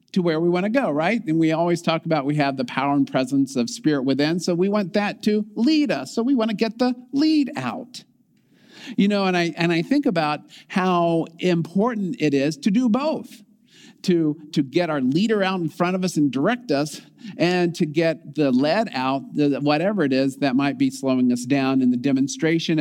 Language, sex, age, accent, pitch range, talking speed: English, male, 50-69, American, 140-215 Hz, 220 wpm